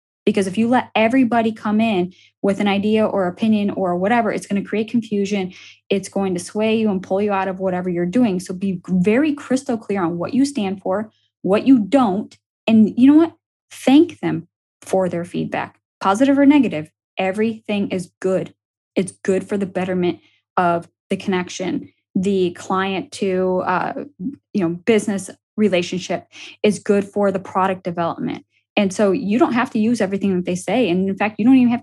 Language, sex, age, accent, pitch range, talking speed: English, female, 10-29, American, 180-220 Hz, 190 wpm